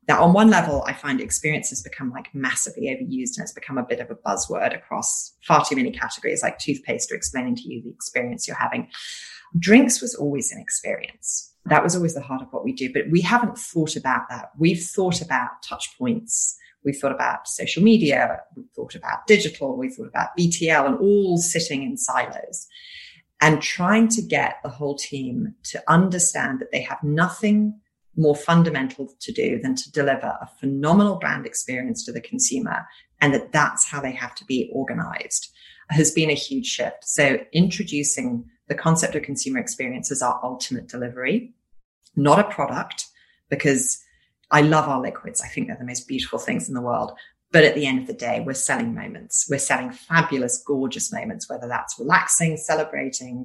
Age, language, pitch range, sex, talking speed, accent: 30-49, English, 140-225 Hz, female, 185 wpm, British